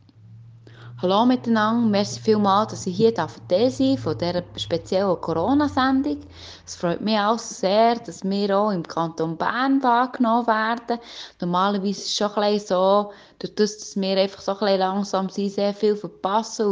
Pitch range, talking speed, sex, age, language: 185-230 Hz, 160 wpm, female, 20-39, German